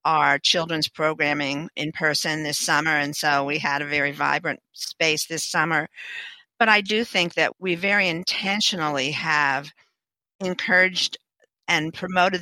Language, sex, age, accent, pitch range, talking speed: English, female, 50-69, American, 150-175 Hz, 140 wpm